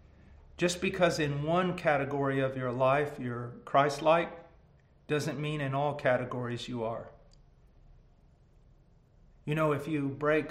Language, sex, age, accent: English, male, 50-69, American